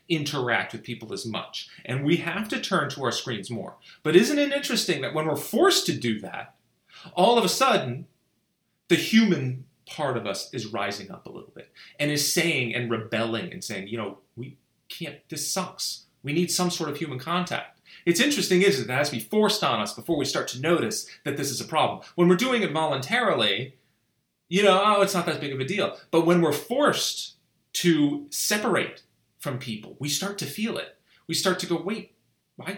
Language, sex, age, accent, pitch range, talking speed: English, male, 30-49, American, 130-180 Hz, 210 wpm